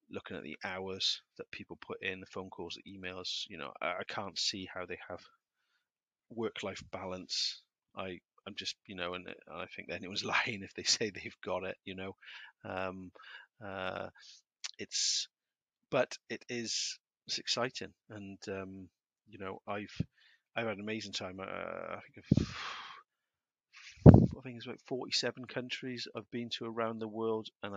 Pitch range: 95-105 Hz